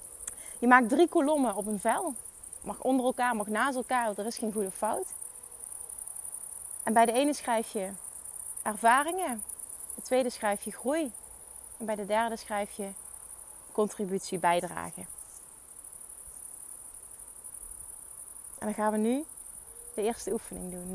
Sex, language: female, Dutch